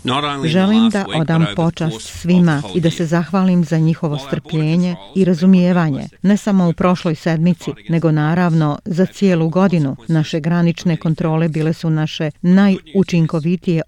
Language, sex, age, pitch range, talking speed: Croatian, female, 40-59, 155-180 Hz, 135 wpm